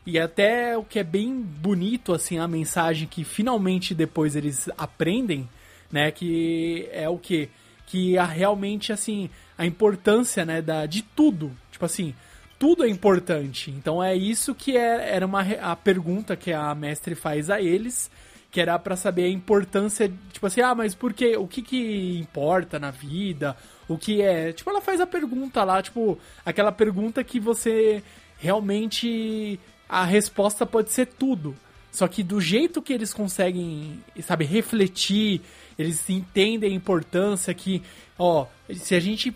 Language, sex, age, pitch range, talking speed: Portuguese, male, 20-39, 165-220 Hz, 160 wpm